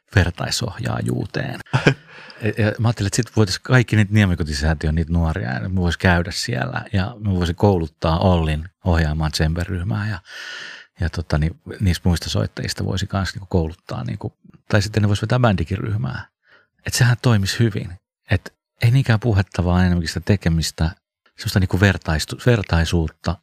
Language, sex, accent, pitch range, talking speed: Finnish, male, native, 85-105 Hz, 145 wpm